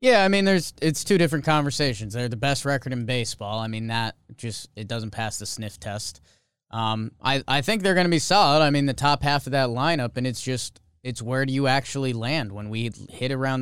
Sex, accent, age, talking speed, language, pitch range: male, American, 20-39, 240 wpm, English, 110-135 Hz